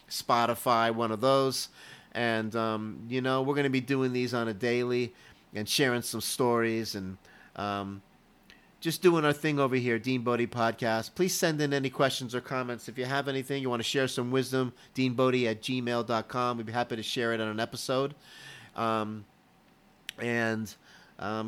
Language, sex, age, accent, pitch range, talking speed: English, male, 30-49, American, 115-140 Hz, 180 wpm